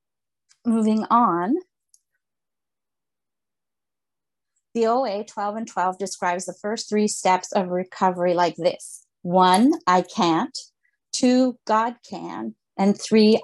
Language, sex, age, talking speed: English, female, 30-49, 105 wpm